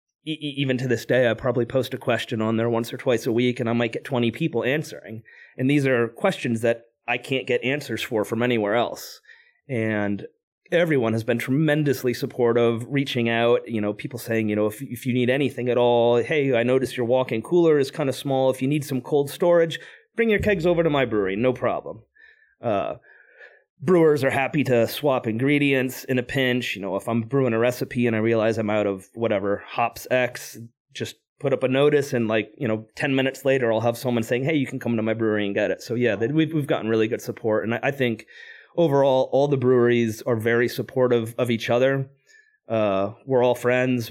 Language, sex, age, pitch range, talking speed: English, male, 30-49, 115-135 Hz, 220 wpm